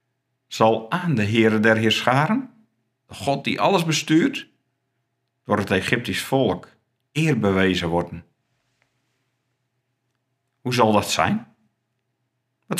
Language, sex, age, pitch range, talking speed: Dutch, male, 50-69, 110-135 Hz, 110 wpm